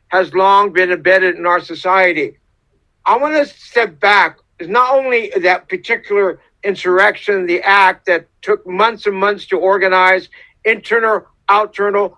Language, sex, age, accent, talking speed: English, male, 60-79, American, 145 wpm